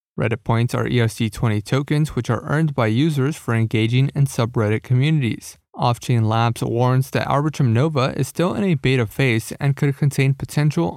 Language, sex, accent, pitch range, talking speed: English, male, American, 120-145 Hz, 175 wpm